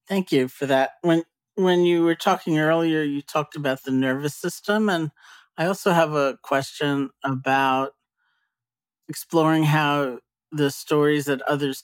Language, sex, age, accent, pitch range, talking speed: English, male, 50-69, American, 130-150 Hz, 145 wpm